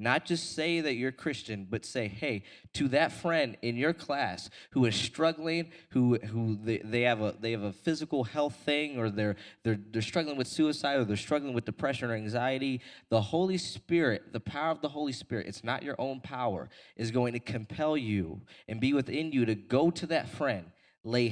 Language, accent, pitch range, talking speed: English, American, 110-150 Hz, 205 wpm